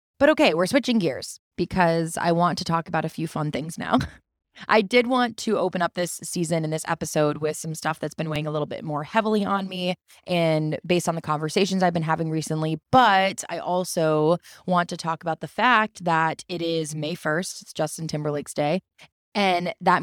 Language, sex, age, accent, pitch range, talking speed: English, female, 20-39, American, 155-185 Hz, 205 wpm